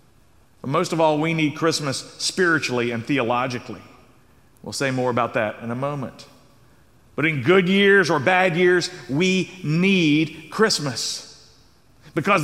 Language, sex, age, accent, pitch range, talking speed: English, male, 50-69, American, 135-190 Hz, 140 wpm